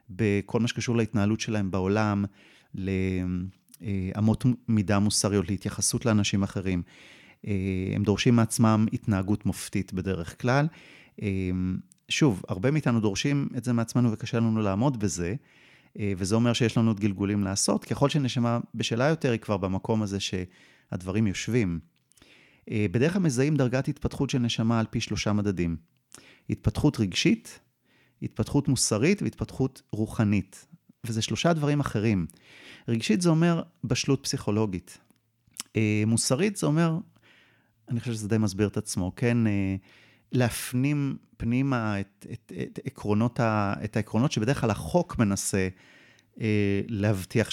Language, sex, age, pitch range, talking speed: Hebrew, male, 30-49, 100-125 Hz, 125 wpm